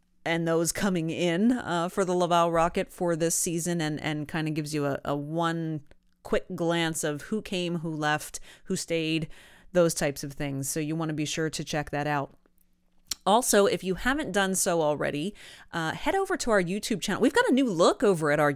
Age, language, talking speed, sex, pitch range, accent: 30-49, English, 210 wpm, female, 160-195 Hz, American